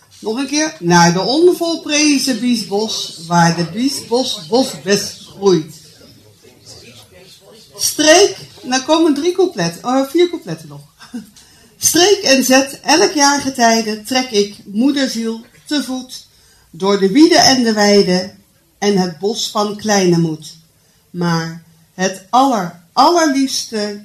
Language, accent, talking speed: Dutch, Dutch, 120 wpm